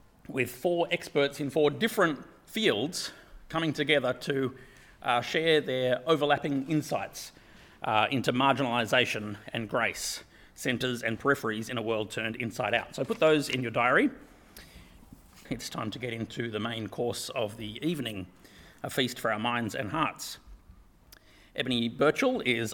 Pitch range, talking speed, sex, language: 115-150 Hz, 150 wpm, male, English